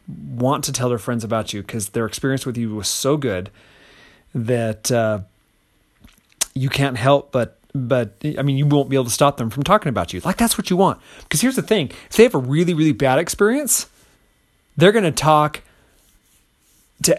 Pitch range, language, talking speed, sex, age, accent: 120-155 Hz, English, 200 wpm, male, 30-49, American